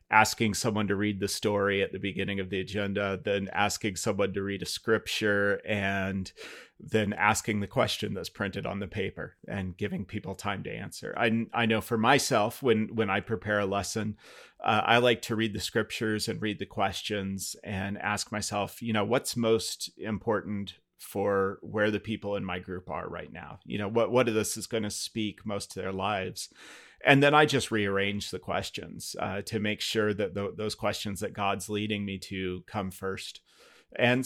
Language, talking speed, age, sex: English, 195 wpm, 30-49, male